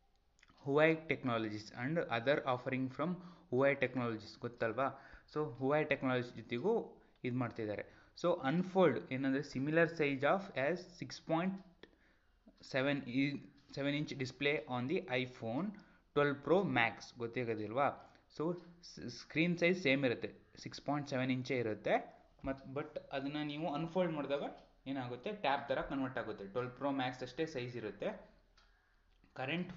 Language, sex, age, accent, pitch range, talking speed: Kannada, male, 20-39, native, 125-150 Hz, 125 wpm